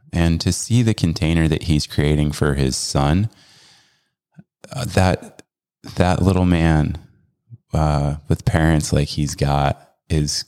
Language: English